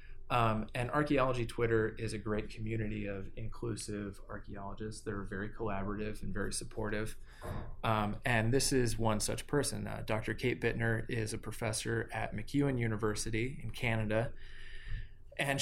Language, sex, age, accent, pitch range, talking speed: English, male, 20-39, American, 105-120 Hz, 150 wpm